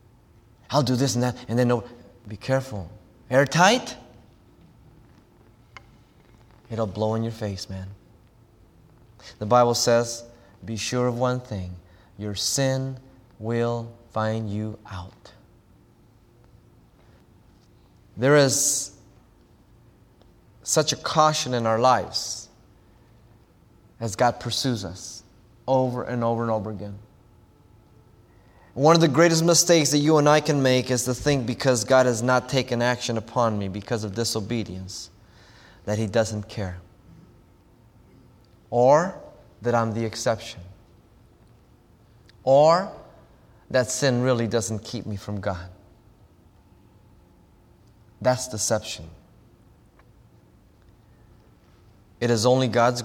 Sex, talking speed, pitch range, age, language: male, 110 wpm, 105-125 Hz, 20-39, English